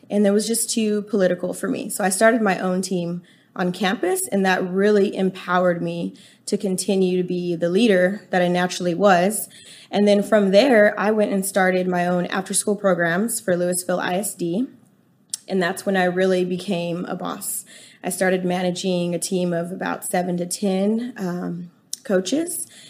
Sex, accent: female, American